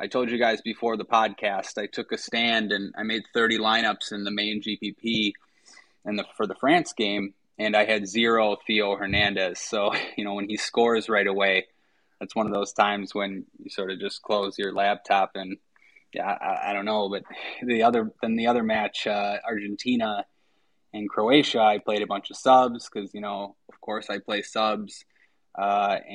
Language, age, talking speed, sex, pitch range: English, 20-39, 195 wpm, male, 105-125 Hz